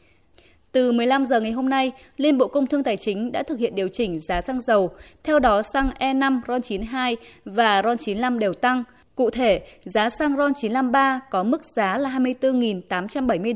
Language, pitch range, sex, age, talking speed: Vietnamese, 215-270 Hz, female, 20-39, 175 wpm